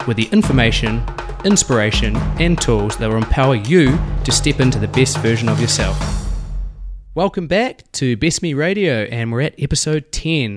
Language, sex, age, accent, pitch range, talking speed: English, male, 20-39, Australian, 110-140 Hz, 165 wpm